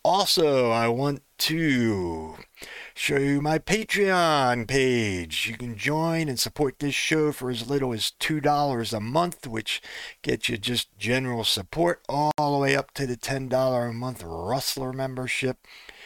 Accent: American